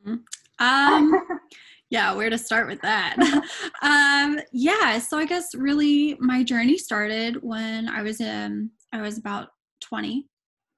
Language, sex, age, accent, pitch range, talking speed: English, female, 10-29, American, 225-255 Hz, 135 wpm